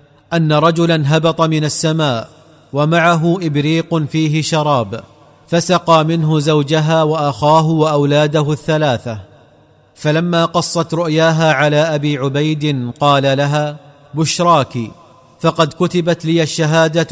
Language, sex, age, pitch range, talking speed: Arabic, male, 40-59, 145-165 Hz, 100 wpm